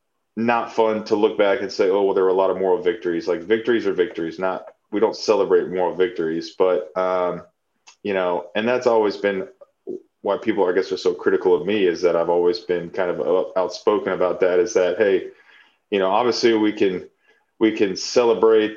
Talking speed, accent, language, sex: 205 wpm, American, English, male